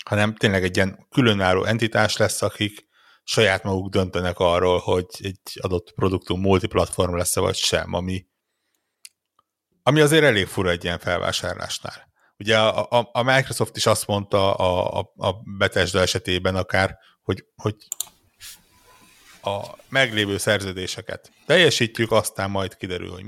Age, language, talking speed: 60-79, Hungarian, 135 wpm